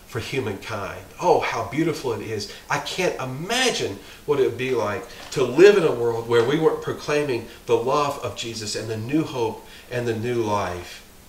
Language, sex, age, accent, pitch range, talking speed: English, male, 40-59, American, 115-190 Hz, 190 wpm